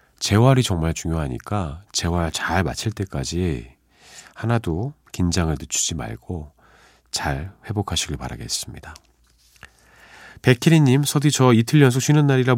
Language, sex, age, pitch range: Korean, male, 40-59, 80-125 Hz